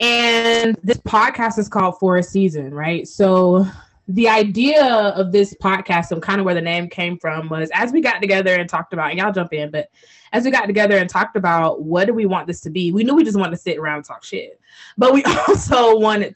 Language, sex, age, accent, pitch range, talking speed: English, female, 20-39, American, 175-220 Hz, 235 wpm